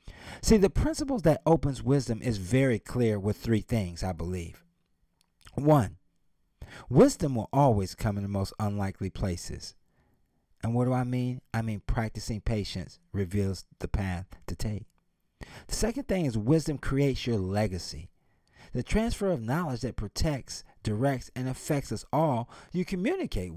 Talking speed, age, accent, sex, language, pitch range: 150 wpm, 40-59, American, male, English, 90-125 Hz